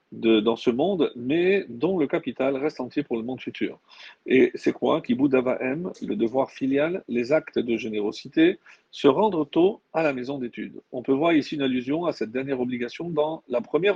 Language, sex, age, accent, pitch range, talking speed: French, male, 50-69, French, 125-165 Hz, 200 wpm